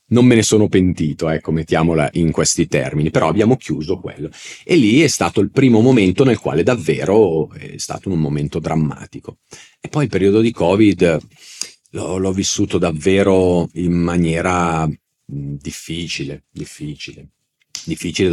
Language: Italian